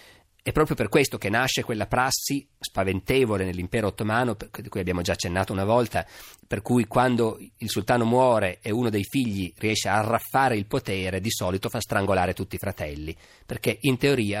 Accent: native